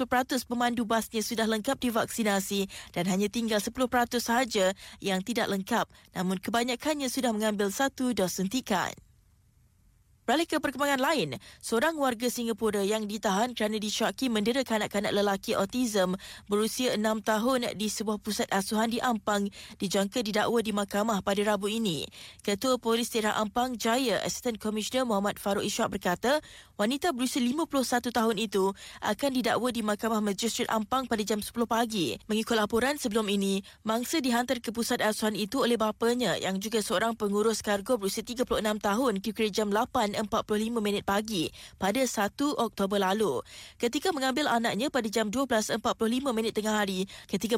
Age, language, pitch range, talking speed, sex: 20-39, Malay, 210-245 Hz, 150 wpm, female